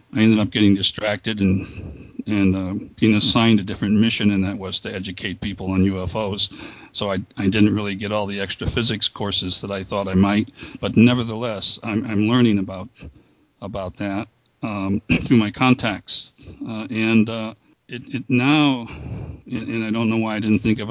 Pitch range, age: 100-115 Hz, 60-79